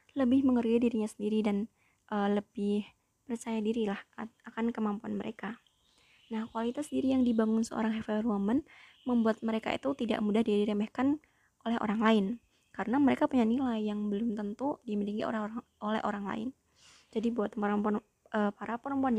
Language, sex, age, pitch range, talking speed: Indonesian, female, 20-39, 210-240 Hz, 145 wpm